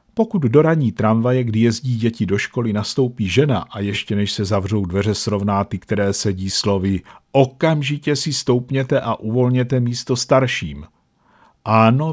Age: 50-69